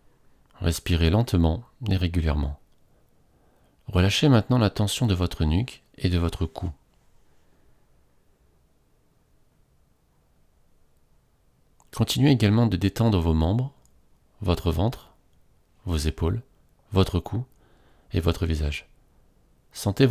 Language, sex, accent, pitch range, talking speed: French, male, French, 80-110 Hz, 95 wpm